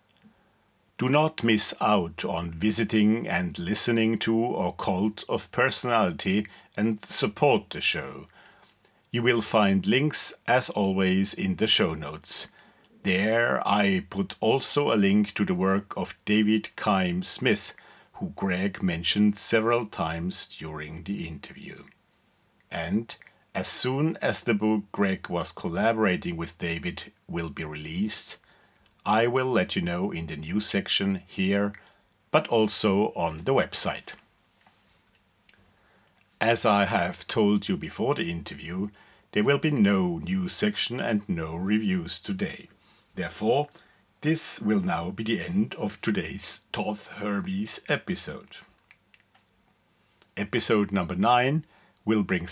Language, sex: English, male